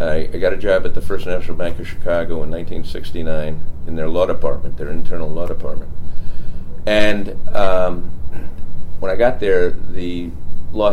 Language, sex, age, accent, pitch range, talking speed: English, male, 50-69, American, 80-95 Hz, 160 wpm